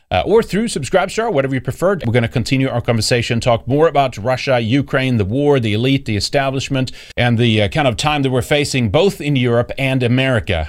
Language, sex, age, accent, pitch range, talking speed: English, male, 40-59, American, 115-145 Hz, 215 wpm